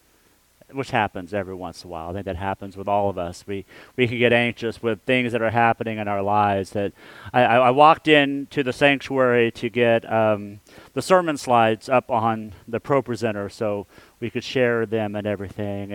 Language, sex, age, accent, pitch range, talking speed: English, male, 40-59, American, 105-125 Hz, 200 wpm